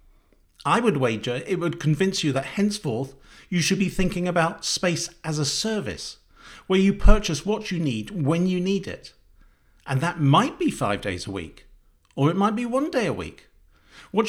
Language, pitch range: English, 130-190 Hz